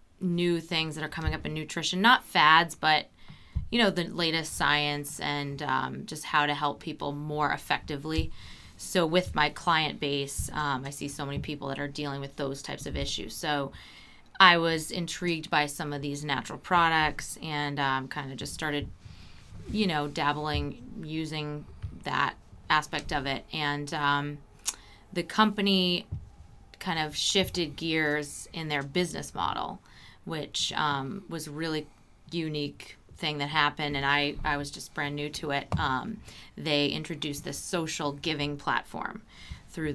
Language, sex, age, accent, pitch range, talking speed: English, female, 20-39, American, 145-165 Hz, 160 wpm